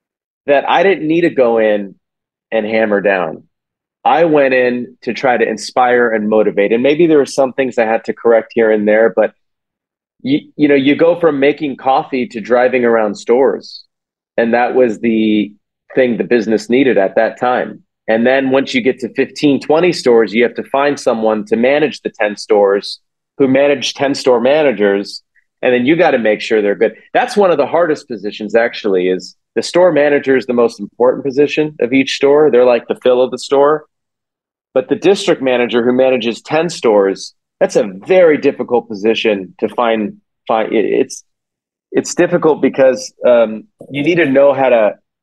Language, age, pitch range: English, 30-49, 110-140 Hz